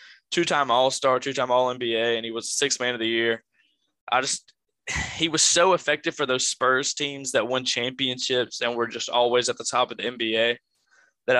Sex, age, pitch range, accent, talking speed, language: male, 10-29, 115-135 Hz, American, 195 wpm, English